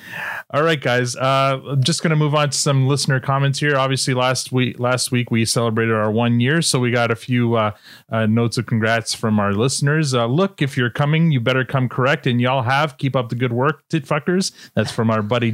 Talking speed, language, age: 235 wpm, English, 30-49